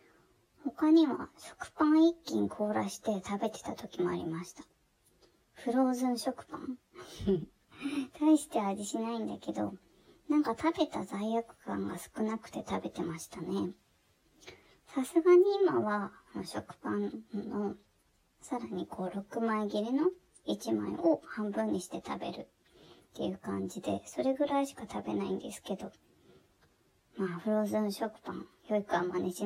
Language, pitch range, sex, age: Japanese, 190-280 Hz, male, 20-39